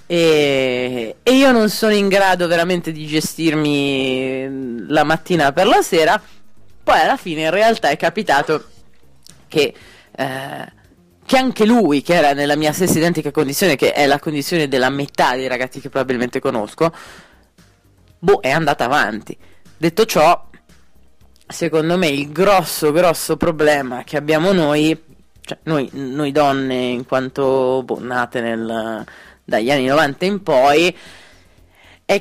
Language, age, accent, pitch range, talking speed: Italian, 20-39, native, 140-180 Hz, 140 wpm